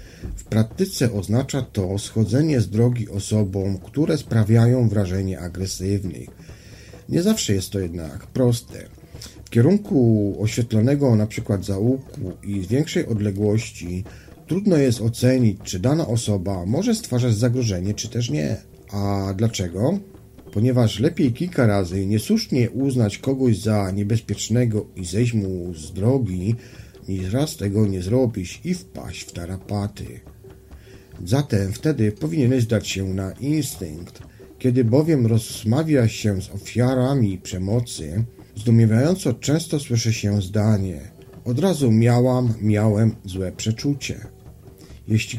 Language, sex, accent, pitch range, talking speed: Polish, male, native, 100-125 Hz, 120 wpm